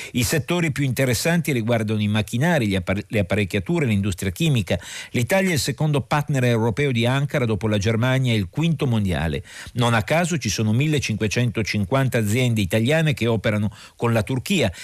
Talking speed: 160 wpm